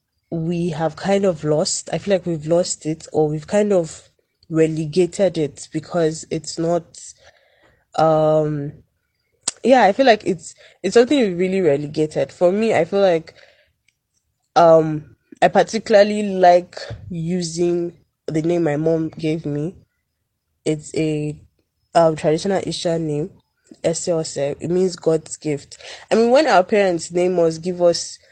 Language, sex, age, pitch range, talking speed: English, female, 10-29, 155-185 Hz, 140 wpm